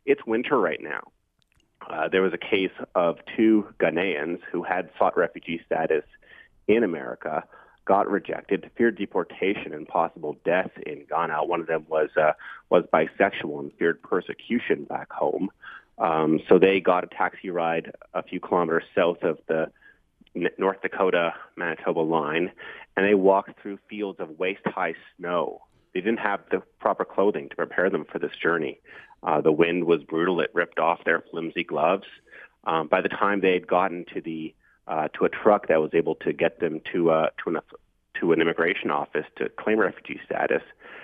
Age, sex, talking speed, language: 30-49, male, 170 wpm, English